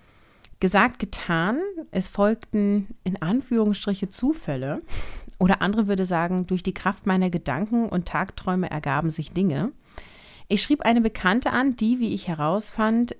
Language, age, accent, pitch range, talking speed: German, 30-49, German, 170-225 Hz, 135 wpm